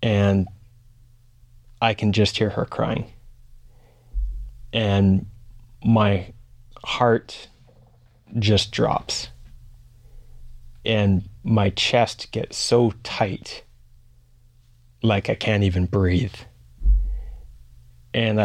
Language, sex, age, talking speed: English, male, 20-39, 80 wpm